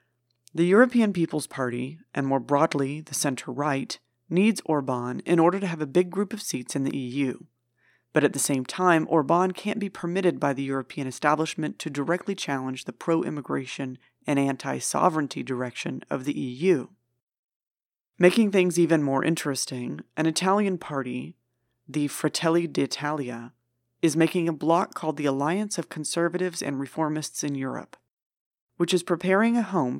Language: English